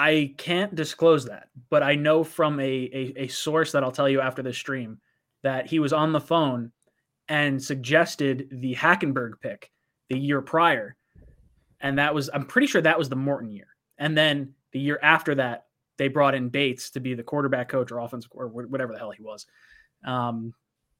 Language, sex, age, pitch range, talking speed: English, male, 20-39, 130-155 Hz, 195 wpm